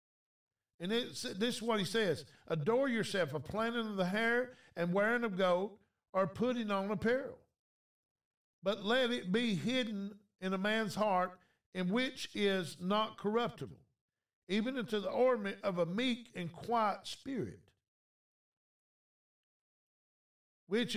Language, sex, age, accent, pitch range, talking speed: English, male, 50-69, American, 175-230 Hz, 130 wpm